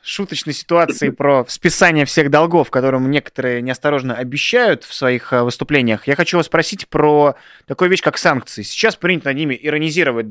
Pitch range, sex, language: 115-145 Hz, male, Russian